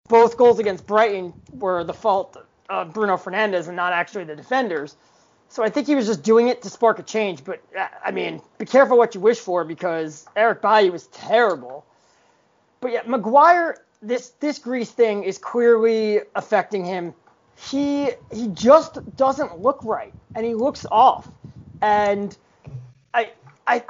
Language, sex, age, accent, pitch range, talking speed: English, male, 30-49, American, 205-245 Hz, 165 wpm